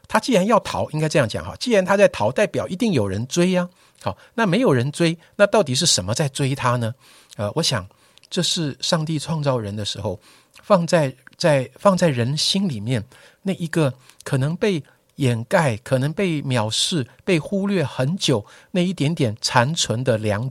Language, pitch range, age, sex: Chinese, 120-170 Hz, 50-69, male